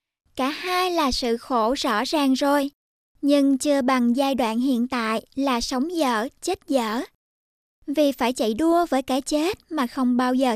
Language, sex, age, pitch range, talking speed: Vietnamese, male, 20-39, 250-300 Hz, 175 wpm